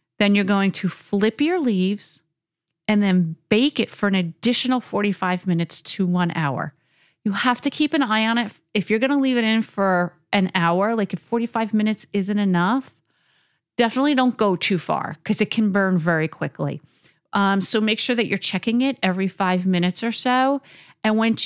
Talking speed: 195 wpm